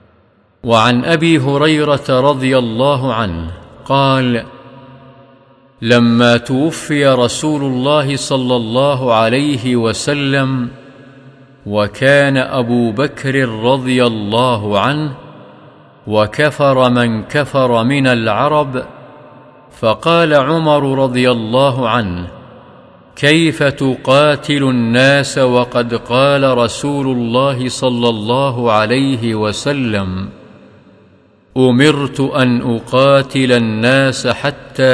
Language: Arabic